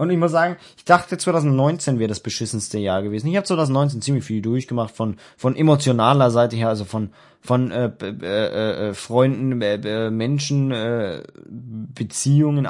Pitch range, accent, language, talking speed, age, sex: 120-165 Hz, German, German, 165 wpm, 20-39, male